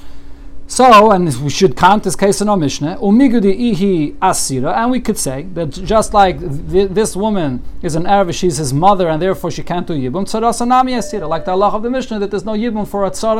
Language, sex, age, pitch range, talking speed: English, male, 40-59, 150-205 Hz, 205 wpm